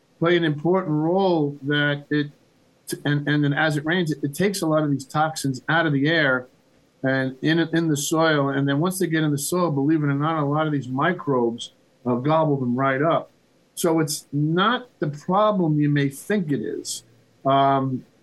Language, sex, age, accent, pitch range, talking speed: English, male, 50-69, American, 130-155 Hz, 205 wpm